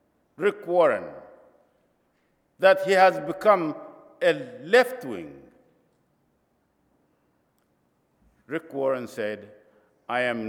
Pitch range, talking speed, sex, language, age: 125-190 Hz, 80 wpm, male, English, 50-69